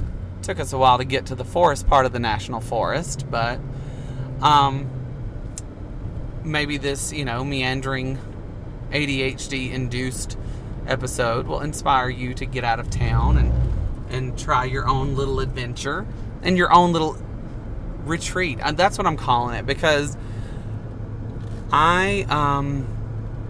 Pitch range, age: 115-135 Hz, 30-49